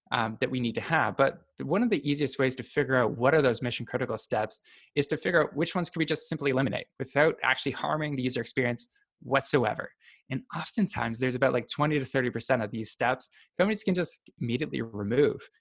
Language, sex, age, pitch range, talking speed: English, male, 20-39, 120-160 Hz, 210 wpm